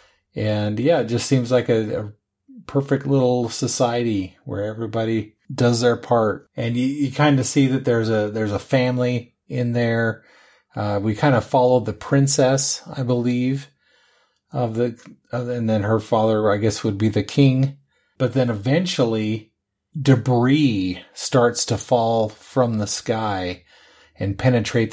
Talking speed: 155 wpm